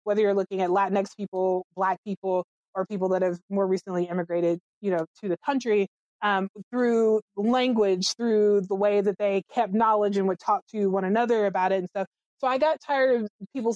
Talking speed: 200 wpm